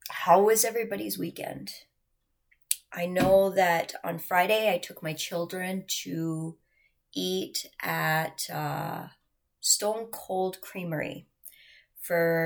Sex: female